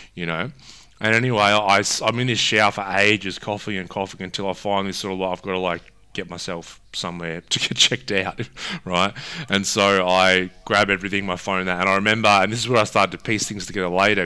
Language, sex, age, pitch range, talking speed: English, male, 20-39, 85-100 Hz, 225 wpm